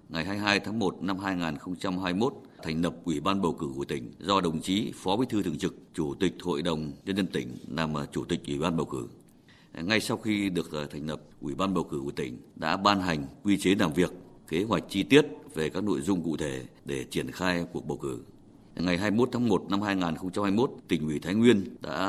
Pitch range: 85-105 Hz